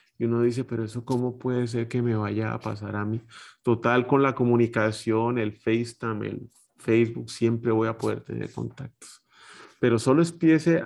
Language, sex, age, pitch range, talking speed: Spanish, male, 30-49, 110-135 Hz, 175 wpm